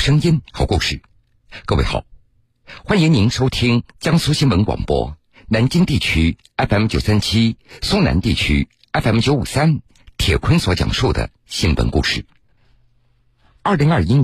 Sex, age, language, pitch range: male, 50-69, Chinese, 95-120 Hz